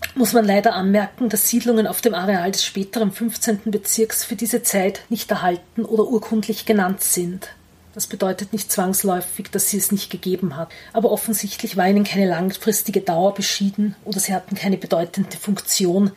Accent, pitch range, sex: Austrian, 190-220 Hz, female